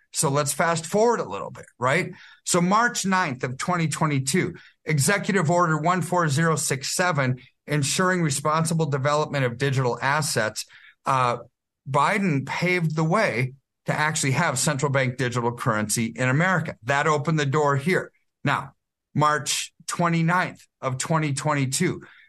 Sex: male